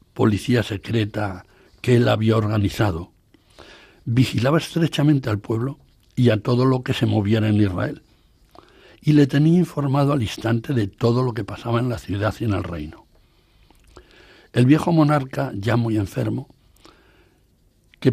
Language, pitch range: Spanish, 105-140 Hz